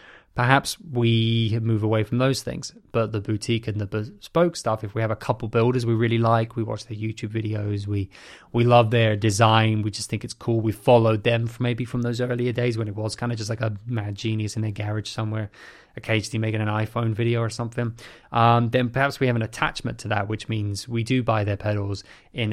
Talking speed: 225 wpm